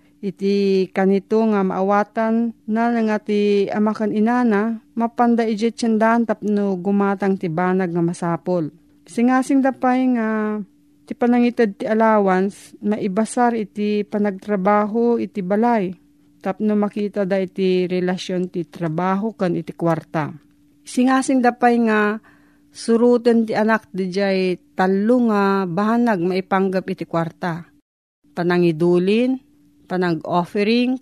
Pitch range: 180-225 Hz